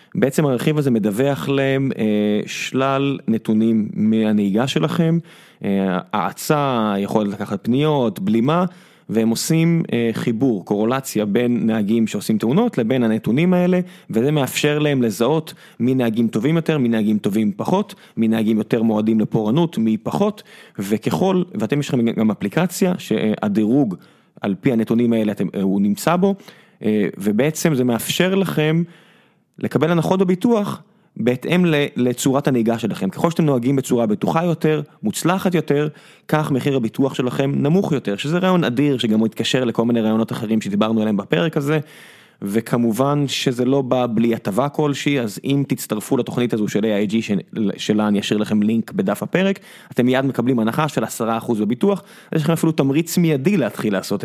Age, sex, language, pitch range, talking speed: 30-49, male, Hebrew, 110-165 Hz, 150 wpm